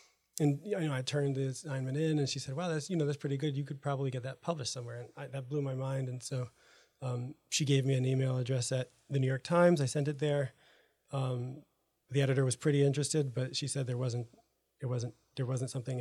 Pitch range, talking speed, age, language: 130-145 Hz, 245 wpm, 30-49, English